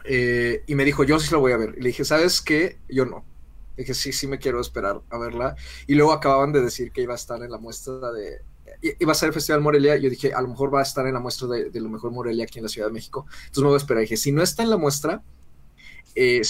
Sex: male